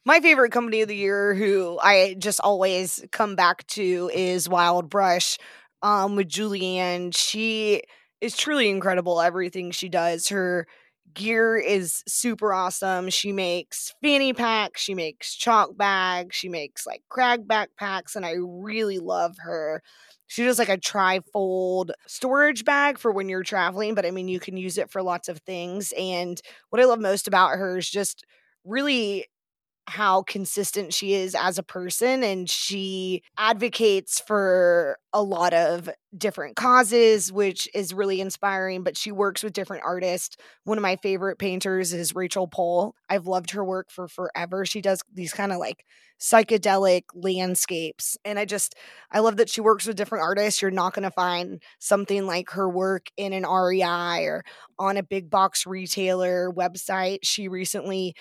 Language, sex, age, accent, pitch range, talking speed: English, female, 20-39, American, 180-205 Hz, 165 wpm